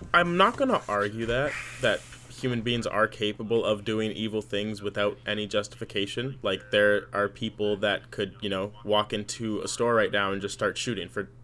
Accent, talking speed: American, 195 wpm